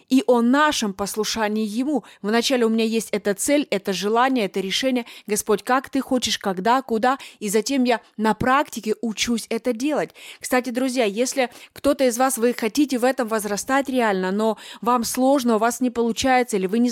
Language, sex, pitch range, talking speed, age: Russian, female, 225-265 Hz, 180 wpm, 20-39